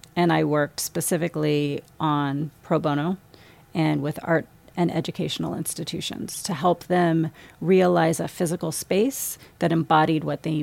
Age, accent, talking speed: 40-59, American, 135 wpm